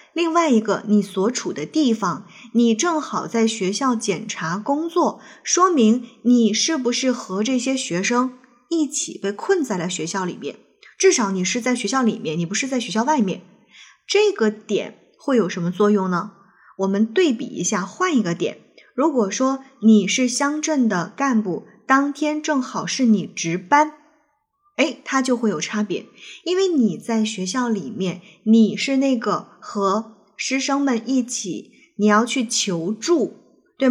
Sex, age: female, 20-39